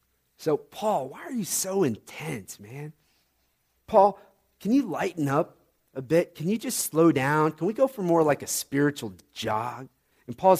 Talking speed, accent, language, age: 175 wpm, American, English, 40-59